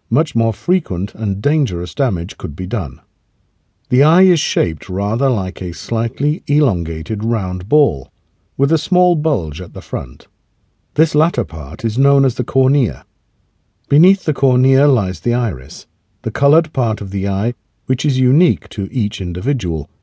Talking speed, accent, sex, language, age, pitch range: 160 wpm, British, male, English, 50-69, 95-140 Hz